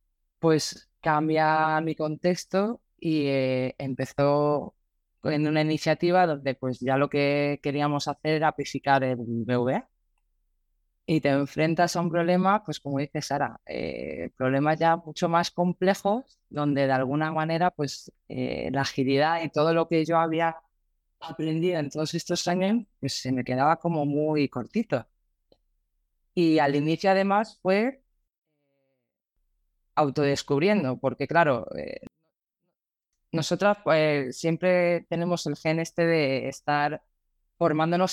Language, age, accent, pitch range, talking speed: Spanish, 20-39, Spanish, 140-165 Hz, 130 wpm